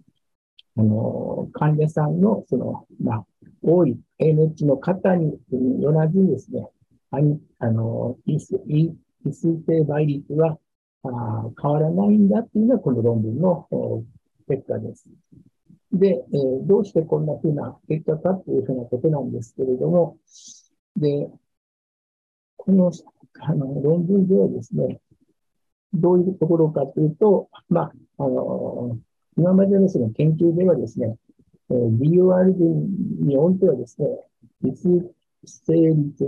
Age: 60-79